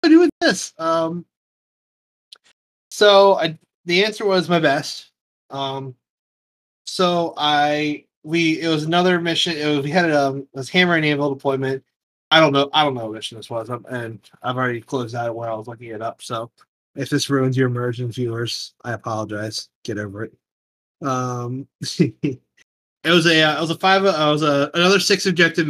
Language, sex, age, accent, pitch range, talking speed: English, male, 20-39, American, 130-155 Hz, 185 wpm